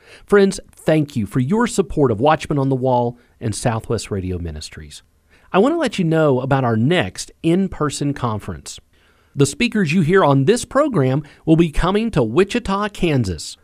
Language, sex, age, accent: English, male, 40-59, American